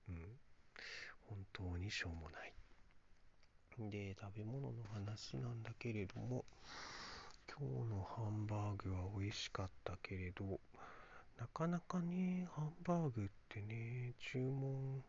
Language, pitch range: Japanese, 95-115 Hz